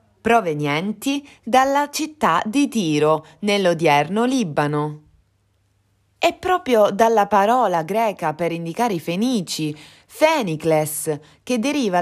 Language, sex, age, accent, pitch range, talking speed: Italian, female, 30-49, native, 150-245 Hz, 95 wpm